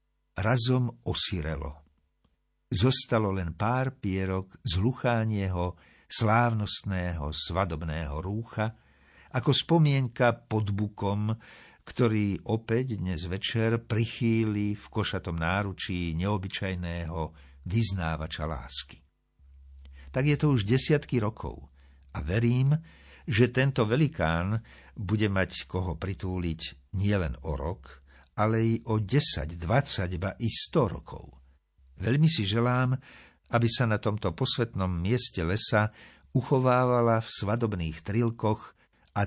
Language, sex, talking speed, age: Slovak, male, 100 wpm, 60-79